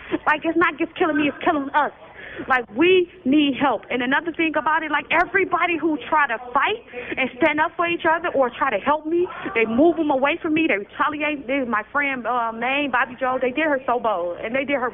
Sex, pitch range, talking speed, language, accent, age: female, 245-325 Hz, 240 wpm, English, American, 30-49